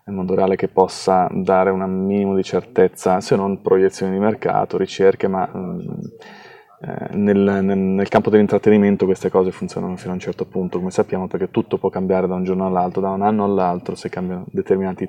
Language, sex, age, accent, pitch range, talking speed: Italian, male, 20-39, native, 95-100 Hz, 180 wpm